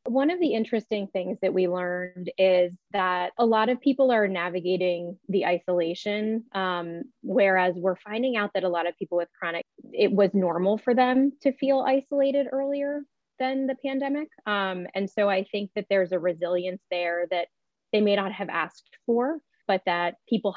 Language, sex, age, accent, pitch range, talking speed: English, female, 20-39, American, 175-210 Hz, 180 wpm